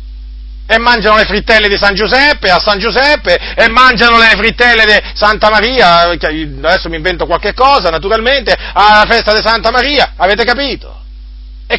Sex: male